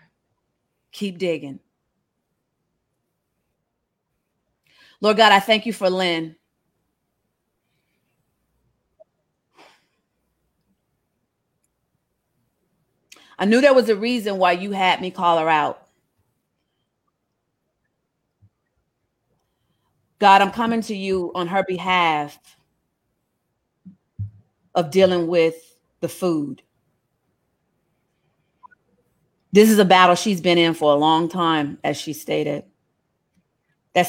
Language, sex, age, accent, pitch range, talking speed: English, female, 40-59, American, 155-195 Hz, 90 wpm